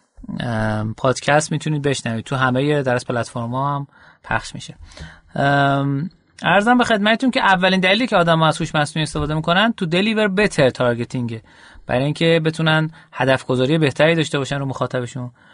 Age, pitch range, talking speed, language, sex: 30-49, 140-180 Hz, 155 wpm, Persian, male